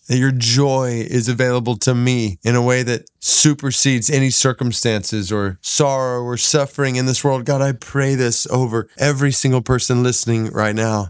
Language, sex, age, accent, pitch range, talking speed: English, male, 30-49, American, 105-125 Hz, 175 wpm